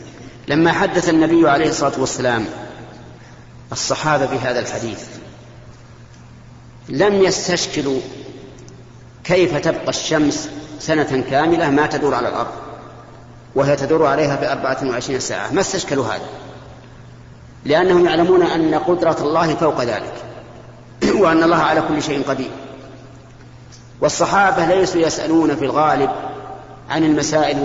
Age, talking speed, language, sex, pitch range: 40-59, 105 wpm, Arabic, male, 130-170 Hz